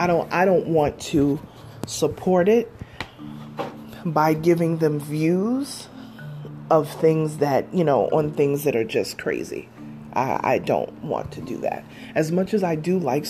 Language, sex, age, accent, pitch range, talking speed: English, female, 30-49, American, 135-165 Hz, 165 wpm